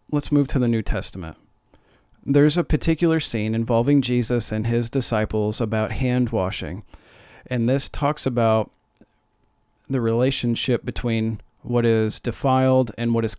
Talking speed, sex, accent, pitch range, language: 135 wpm, male, American, 105-130 Hz, English